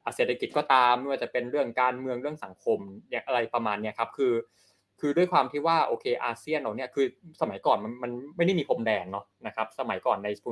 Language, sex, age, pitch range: Thai, male, 20-39, 110-135 Hz